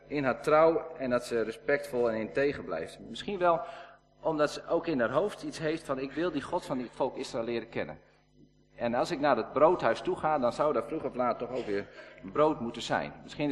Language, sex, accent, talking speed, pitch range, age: Dutch, male, Dutch, 230 wpm, 125-160 Hz, 50-69